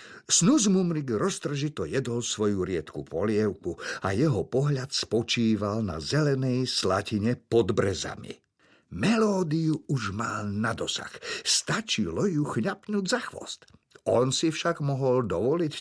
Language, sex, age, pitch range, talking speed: Slovak, male, 50-69, 110-160 Hz, 120 wpm